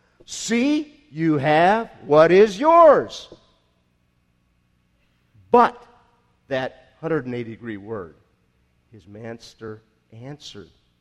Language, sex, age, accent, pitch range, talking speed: English, male, 50-69, American, 105-160 Hz, 75 wpm